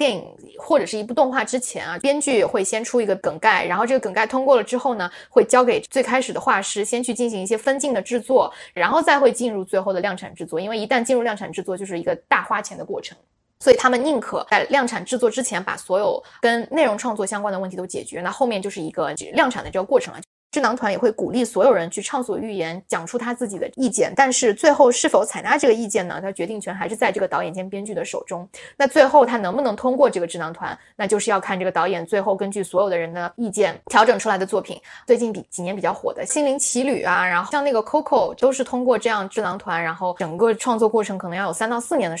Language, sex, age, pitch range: Chinese, female, 20-39, 195-260 Hz